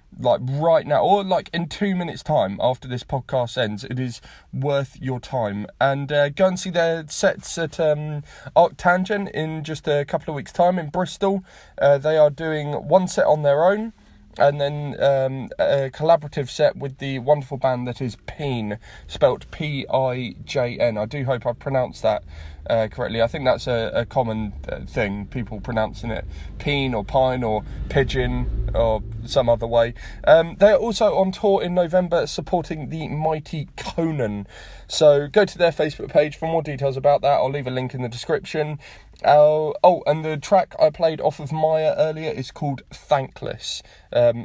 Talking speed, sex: 180 wpm, male